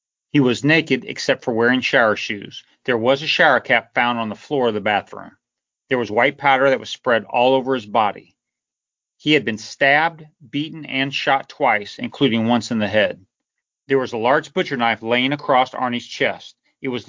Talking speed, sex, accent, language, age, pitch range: 195 wpm, male, American, English, 40-59, 120-150 Hz